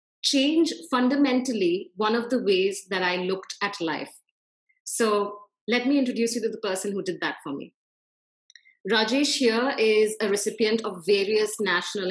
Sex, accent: female, Indian